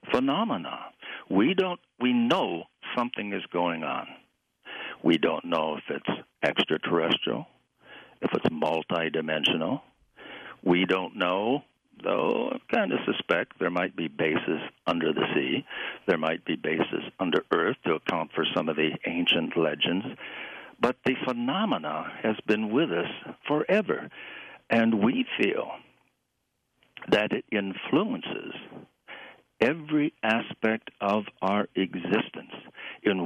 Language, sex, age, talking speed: English, male, 60-79, 120 wpm